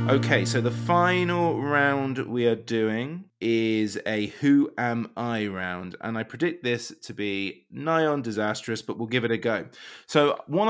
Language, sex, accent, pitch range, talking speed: English, male, British, 115-155 Hz, 175 wpm